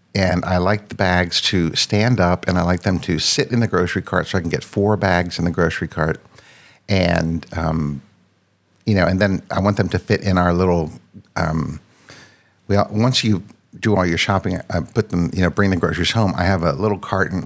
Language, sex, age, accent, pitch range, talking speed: English, male, 60-79, American, 90-110 Hz, 220 wpm